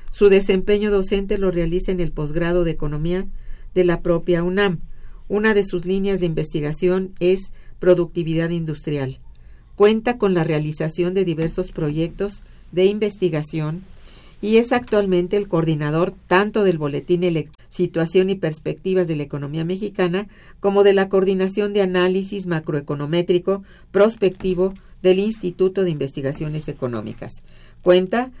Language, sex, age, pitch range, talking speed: Spanish, female, 50-69, 155-195 Hz, 130 wpm